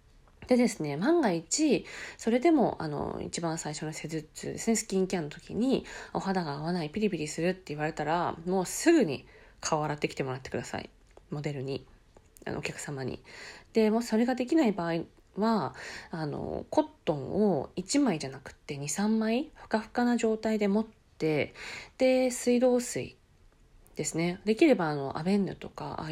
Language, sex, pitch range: Japanese, female, 155-225 Hz